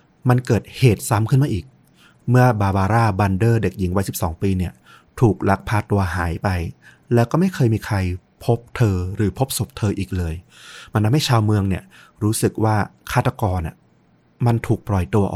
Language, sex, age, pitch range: Thai, male, 30-49, 95-120 Hz